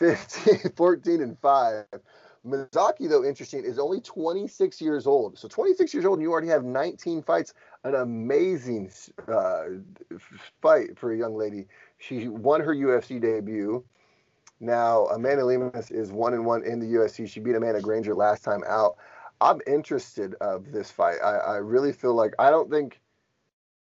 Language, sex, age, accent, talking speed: English, male, 30-49, American, 165 wpm